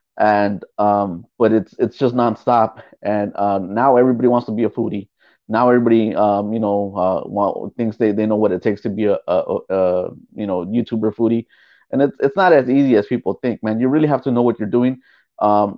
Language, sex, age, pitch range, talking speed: English, male, 30-49, 110-160 Hz, 215 wpm